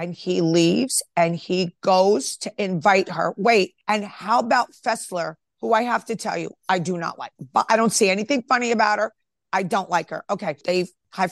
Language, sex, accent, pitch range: English, female, American, 190-255 Hz